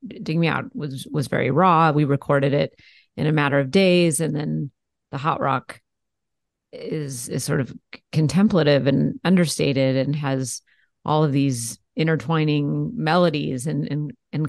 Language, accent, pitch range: English, American, 140-170 Hz